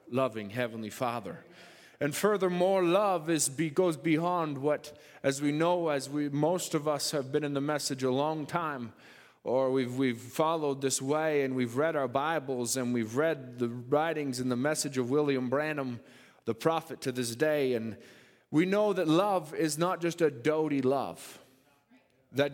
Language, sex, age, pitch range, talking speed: English, male, 30-49, 145-195 Hz, 175 wpm